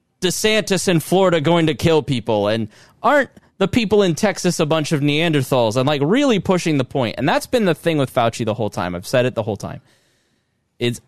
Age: 20-39